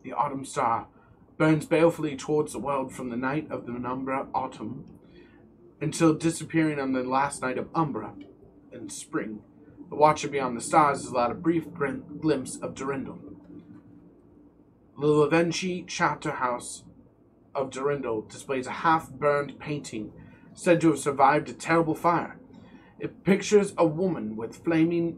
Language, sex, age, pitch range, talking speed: English, male, 30-49, 135-170 Hz, 145 wpm